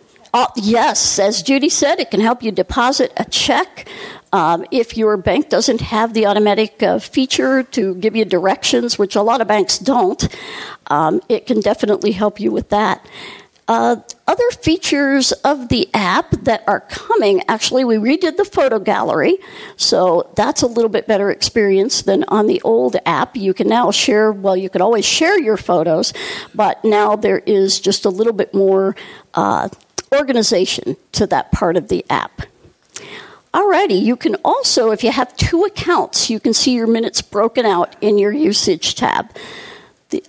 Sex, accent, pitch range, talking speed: female, American, 210-290 Hz, 175 wpm